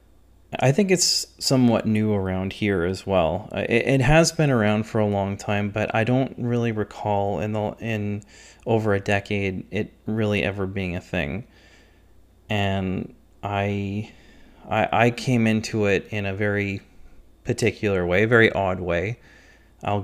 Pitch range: 100-110 Hz